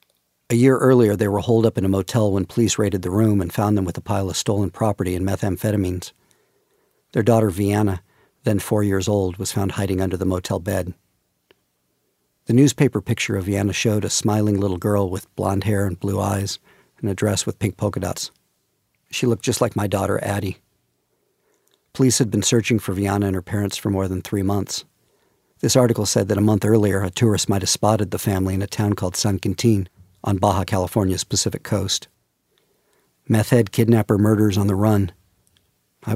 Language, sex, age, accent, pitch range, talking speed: English, male, 50-69, American, 95-115 Hz, 195 wpm